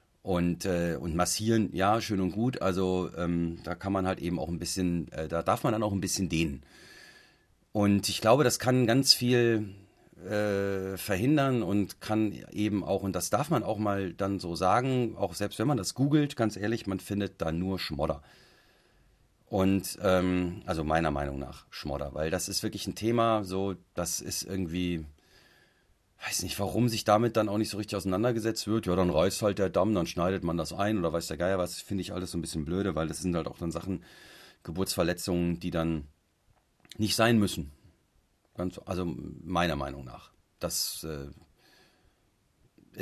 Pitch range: 85-105 Hz